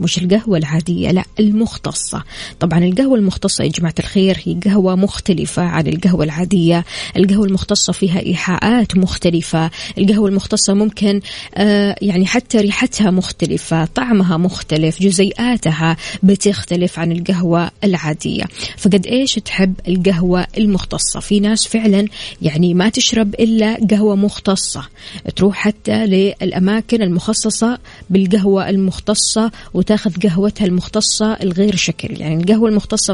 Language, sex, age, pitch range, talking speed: Arabic, female, 20-39, 180-215 Hz, 120 wpm